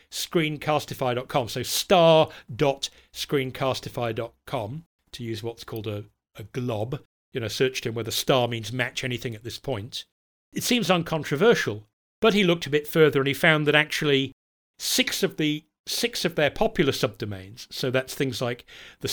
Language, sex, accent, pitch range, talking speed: English, male, British, 115-150 Hz, 160 wpm